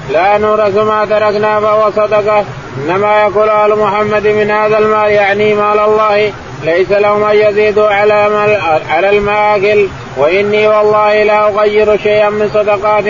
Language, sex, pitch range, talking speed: Arabic, male, 205-210 Hz, 125 wpm